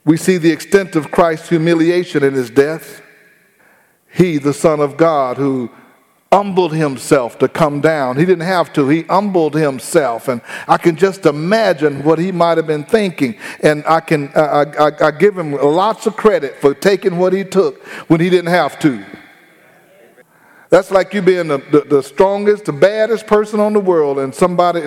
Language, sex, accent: English, male, American